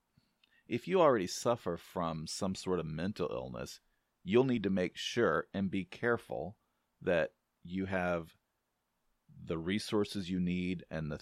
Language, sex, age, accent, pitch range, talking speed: English, male, 40-59, American, 85-115 Hz, 145 wpm